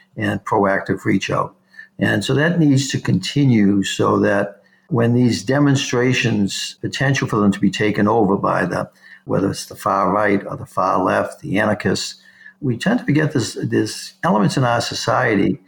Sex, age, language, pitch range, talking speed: male, 60-79, English, 100-135 Hz, 170 wpm